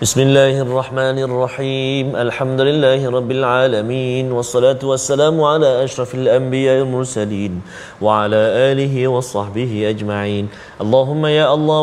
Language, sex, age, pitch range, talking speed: Malayalam, male, 30-49, 125-140 Hz, 105 wpm